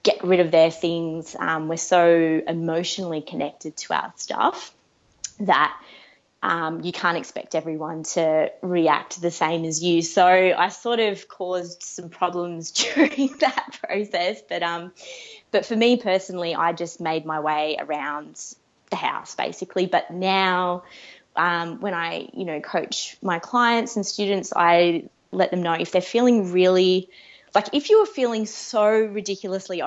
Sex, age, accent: female, 20-39, Australian